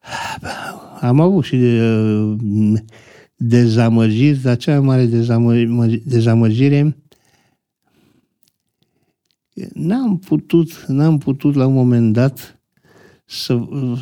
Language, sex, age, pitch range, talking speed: Romanian, male, 60-79, 115-155 Hz, 85 wpm